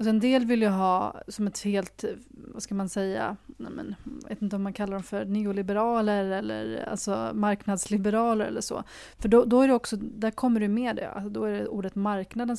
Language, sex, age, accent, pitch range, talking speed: Swedish, female, 30-49, native, 195-220 Hz, 215 wpm